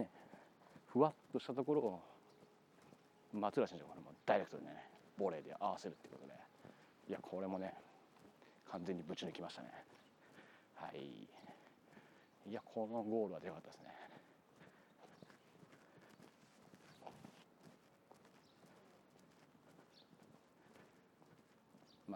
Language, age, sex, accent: Japanese, 40-59, male, native